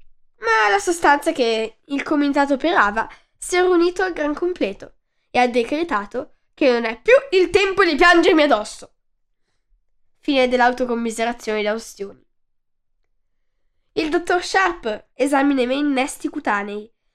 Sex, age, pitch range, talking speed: female, 10-29, 235-325 Hz, 130 wpm